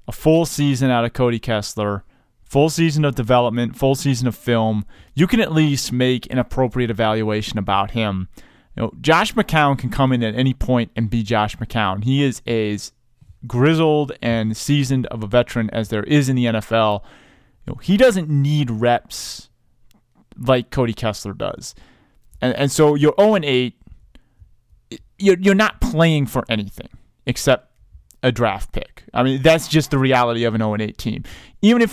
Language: English